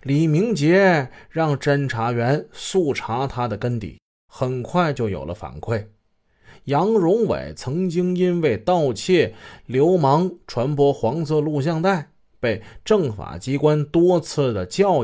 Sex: male